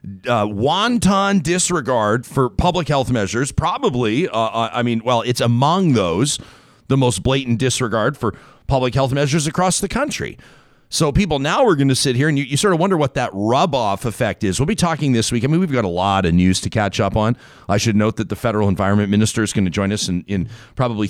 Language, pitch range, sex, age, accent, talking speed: English, 105-130 Hz, male, 40-59, American, 220 wpm